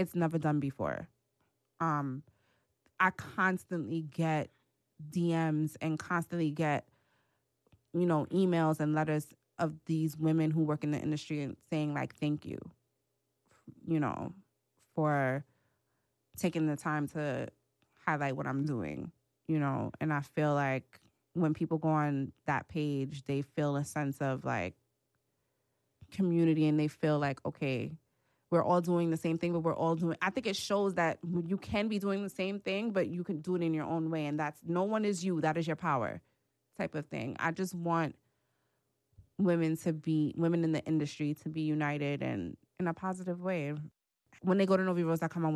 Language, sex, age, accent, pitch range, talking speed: English, female, 20-39, American, 140-165 Hz, 180 wpm